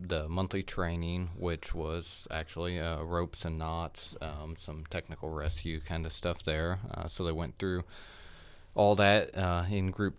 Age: 20-39